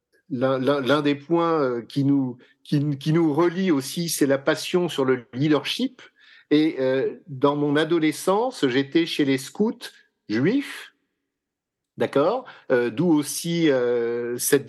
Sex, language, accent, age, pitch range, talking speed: male, French, French, 50-69, 135-165 Hz, 105 wpm